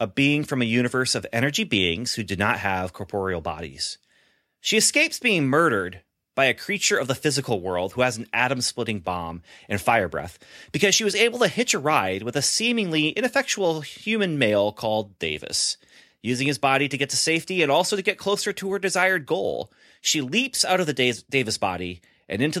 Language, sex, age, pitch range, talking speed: English, male, 30-49, 105-170 Hz, 200 wpm